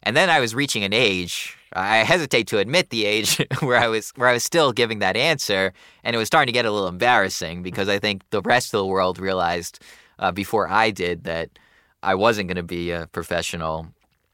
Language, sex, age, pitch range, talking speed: English, male, 20-39, 85-105 Hz, 230 wpm